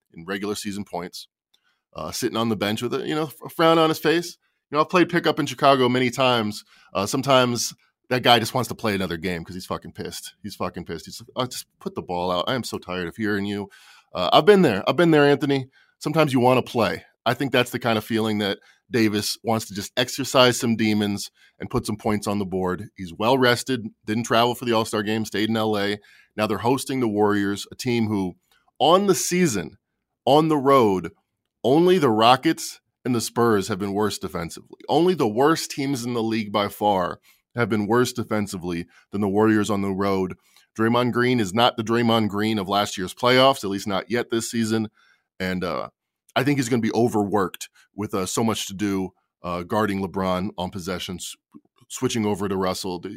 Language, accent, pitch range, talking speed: English, American, 100-125 Hz, 215 wpm